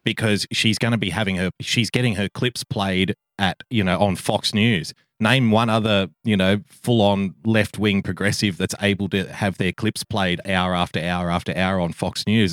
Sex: male